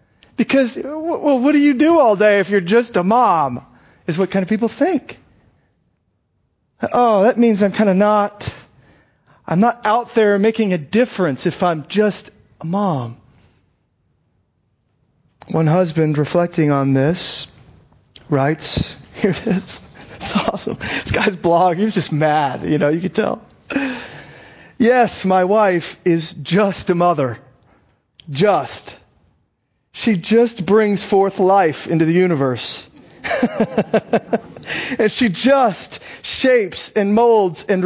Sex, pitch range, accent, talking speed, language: male, 175-235 Hz, American, 130 wpm, English